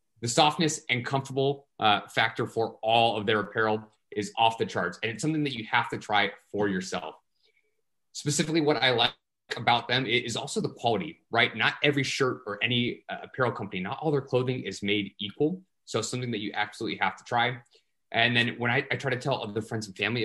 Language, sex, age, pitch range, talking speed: English, male, 30-49, 110-150 Hz, 215 wpm